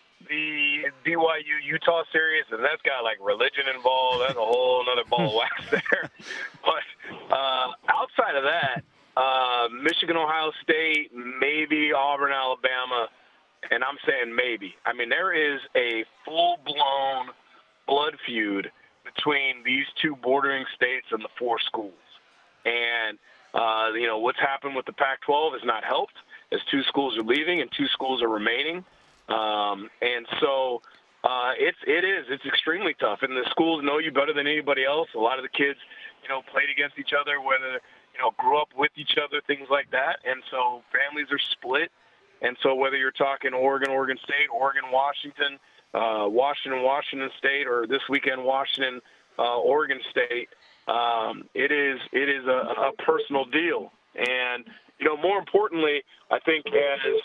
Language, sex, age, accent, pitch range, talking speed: English, male, 40-59, American, 130-160 Hz, 160 wpm